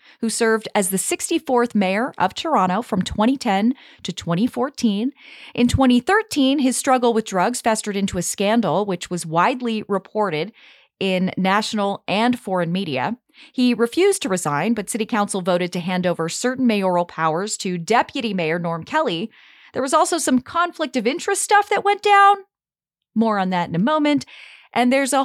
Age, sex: 30-49, female